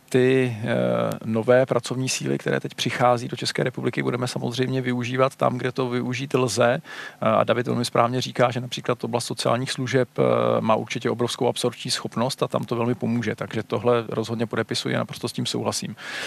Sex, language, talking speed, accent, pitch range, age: male, Czech, 175 wpm, native, 120-140 Hz, 40-59